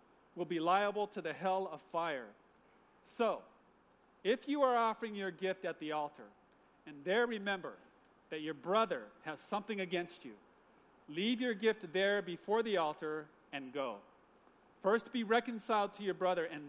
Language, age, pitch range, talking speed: English, 40-59, 155-205 Hz, 160 wpm